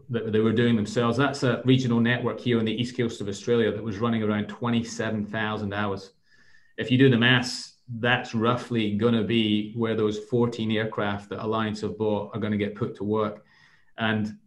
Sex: male